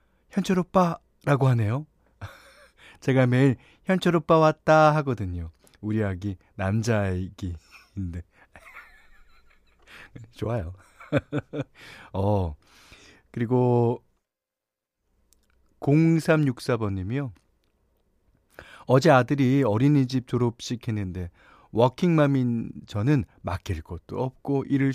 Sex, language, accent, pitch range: male, Korean, native, 95-140 Hz